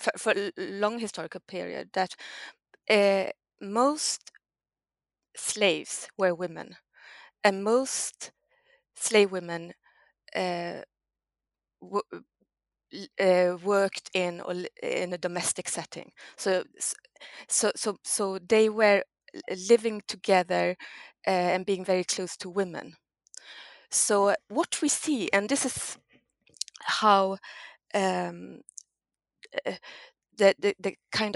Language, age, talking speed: English, 20-39, 105 wpm